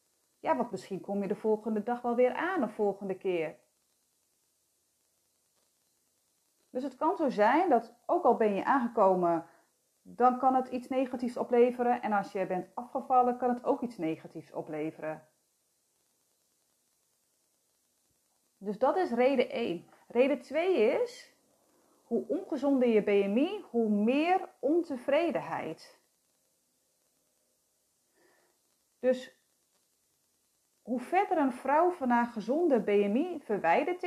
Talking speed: 120 wpm